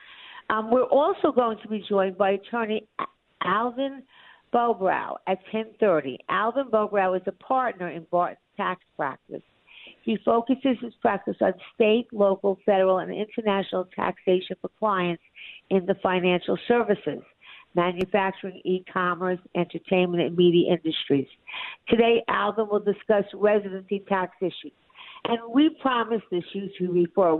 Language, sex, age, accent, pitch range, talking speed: English, female, 50-69, American, 180-230 Hz, 125 wpm